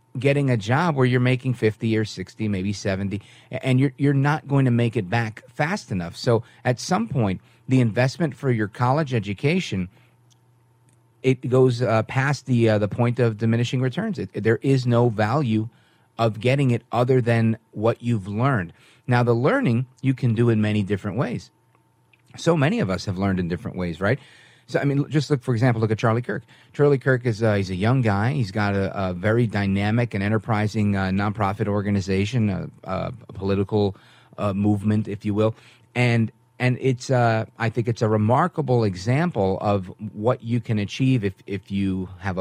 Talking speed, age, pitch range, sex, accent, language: 190 wpm, 40-59, 105-130 Hz, male, American, English